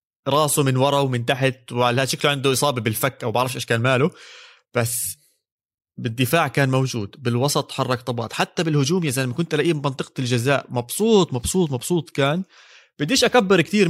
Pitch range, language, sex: 120-160 Hz, Arabic, male